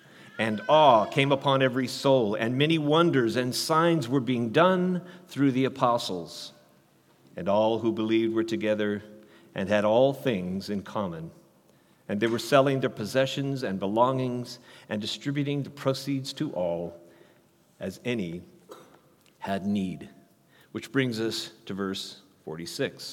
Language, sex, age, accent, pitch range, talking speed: English, male, 50-69, American, 120-175 Hz, 135 wpm